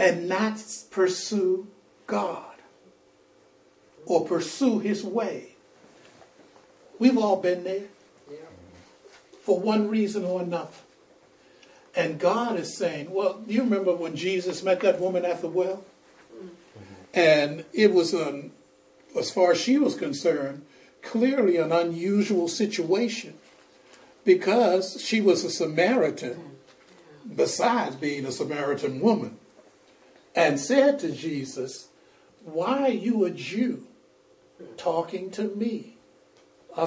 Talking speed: 110 wpm